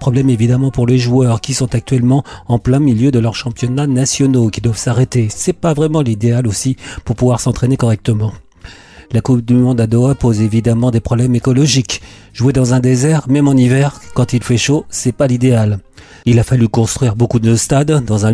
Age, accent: 40-59, French